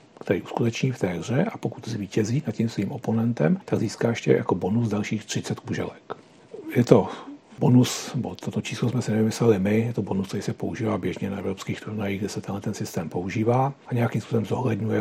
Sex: male